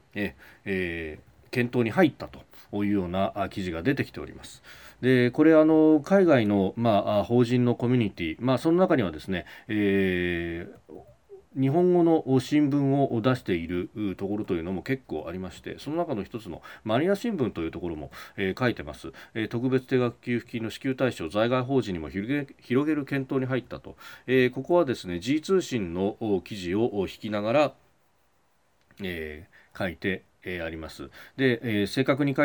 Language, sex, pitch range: Japanese, male, 95-135 Hz